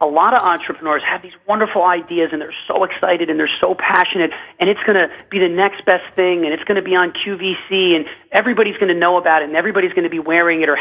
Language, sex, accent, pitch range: English, male, American, 160-215 Hz